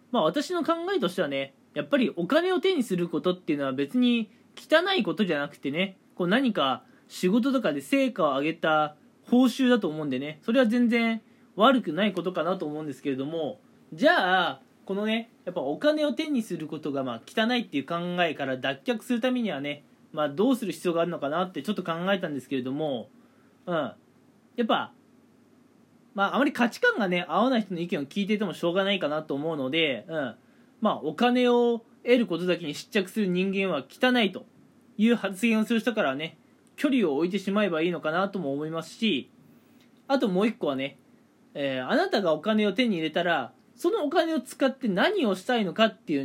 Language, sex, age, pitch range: Japanese, male, 20-39, 170-250 Hz